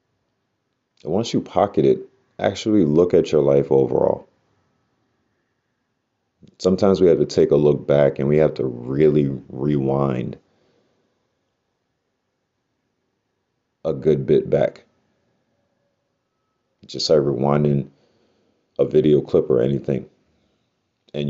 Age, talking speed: 30-49, 105 wpm